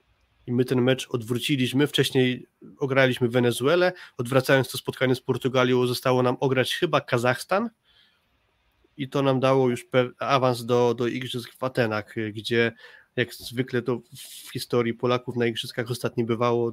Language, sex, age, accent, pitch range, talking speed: Polish, male, 30-49, native, 120-130 Hz, 145 wpm